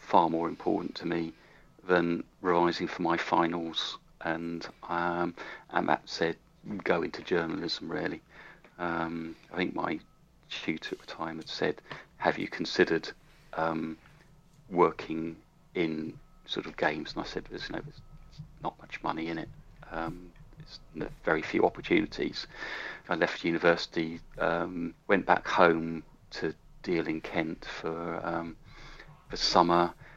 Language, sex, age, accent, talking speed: English, male, 40-59, British, 140 wpm